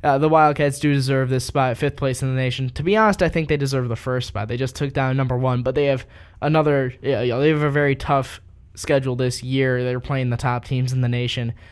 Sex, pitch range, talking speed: male, 120-145 Hz, 245 wpm